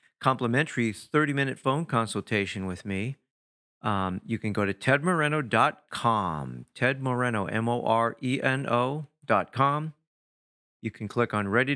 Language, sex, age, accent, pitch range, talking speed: English, male, 50-69, American, 105-135 Hz, 130 wpm